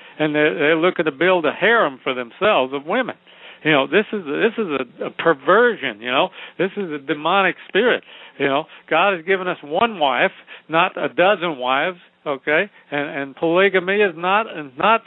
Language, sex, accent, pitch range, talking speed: English, male, American, 150-175 Hz, 190 wpm